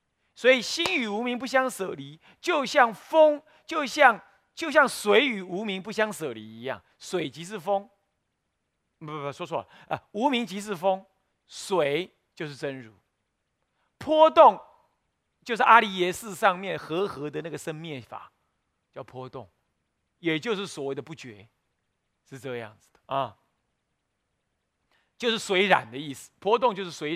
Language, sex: Chinese, male